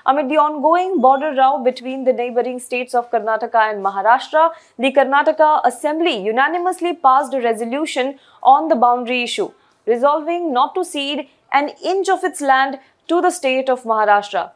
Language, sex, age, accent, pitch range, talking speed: English, female, 20-39, Indian, 235-305 Hz, 155 wpm